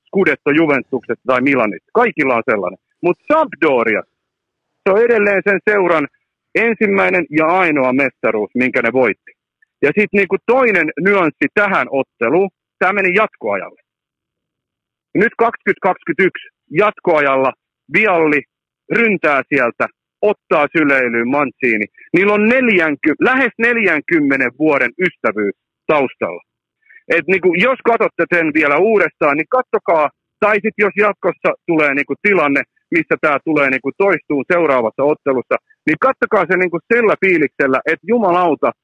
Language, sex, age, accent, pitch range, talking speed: Finnish, male, 50-69, native, 150-230 Hz, 120 wpm